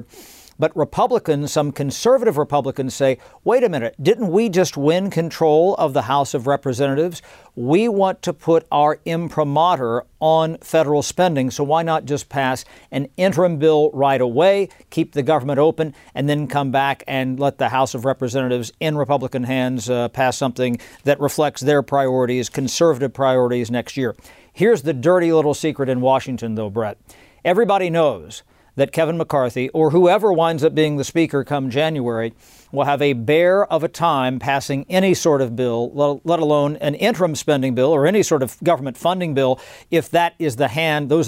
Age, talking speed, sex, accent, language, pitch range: 50-69, 175 wpm, male, American, English, 135-165 Hz